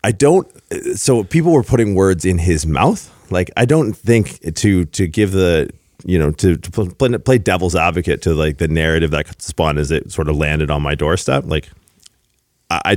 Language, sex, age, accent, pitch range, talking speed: English, male, 30-49, American, 85-110 Hz, 190 wpm